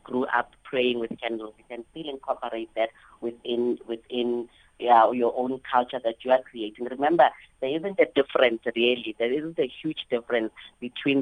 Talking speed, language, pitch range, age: 165 wpm, English, 115-130 Hz, 30-49